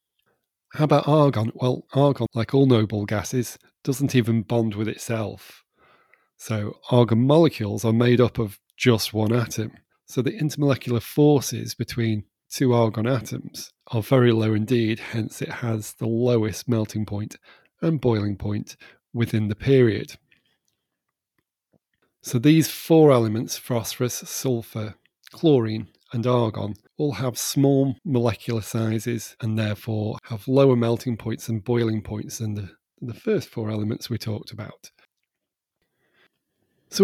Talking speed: 135 wpm